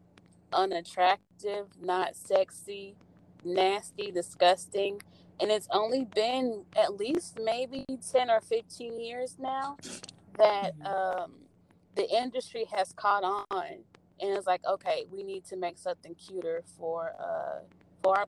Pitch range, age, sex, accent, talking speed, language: 185-230 Hz, 20-39, female, American, 125 wpm, English